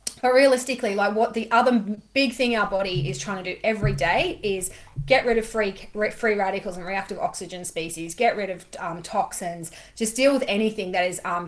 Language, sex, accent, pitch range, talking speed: English, female, Australian, 170-215 Hz, 205 wpm